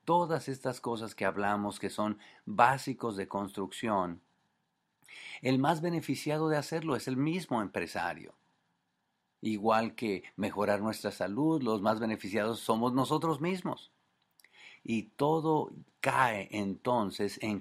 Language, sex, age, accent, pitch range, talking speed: English, male, 50-69, Mexican, 100-140 Hz, 120 wpm